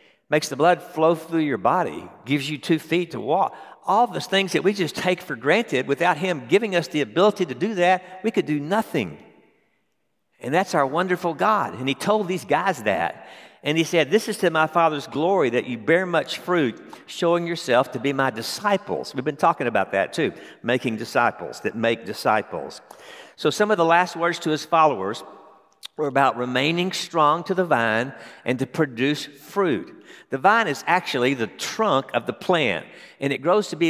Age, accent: 60-79, American